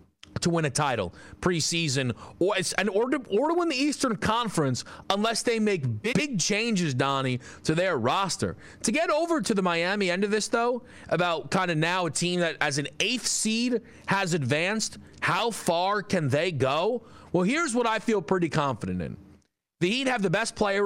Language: English